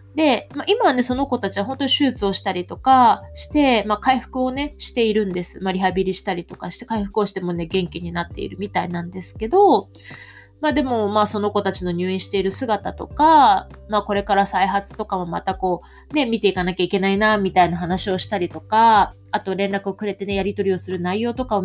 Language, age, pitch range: Japanese, 20-39, 175-225 Hz